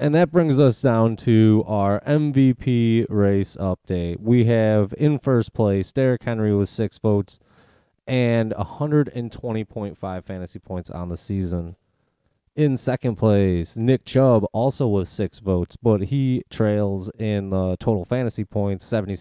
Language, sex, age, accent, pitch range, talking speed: English, male, 20-39, American, 100-125 Hz, 135 wpm